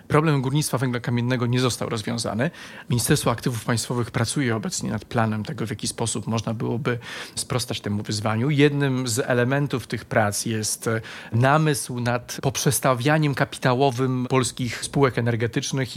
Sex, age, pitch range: male, 30-49, 115-135 Hz